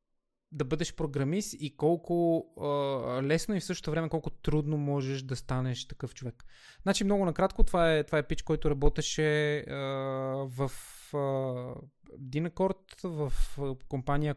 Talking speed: 140 wpm